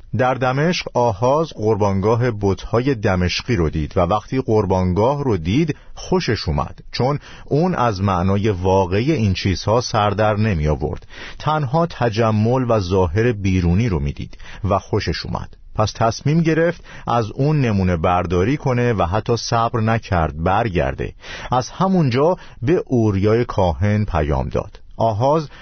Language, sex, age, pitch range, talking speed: Persian, male, 50-69, 90-130 Hz, 130 wpm